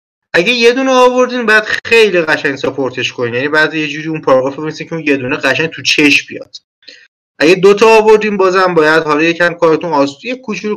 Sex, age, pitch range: male, 30-49, 125-175 Hz